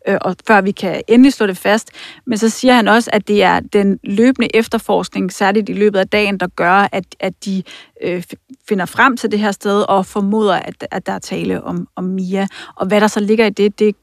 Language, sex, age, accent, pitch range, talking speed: Danish, female, 30-49, native, 190-210 Hz, 225 wpm